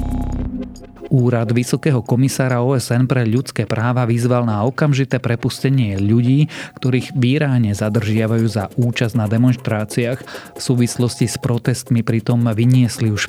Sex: male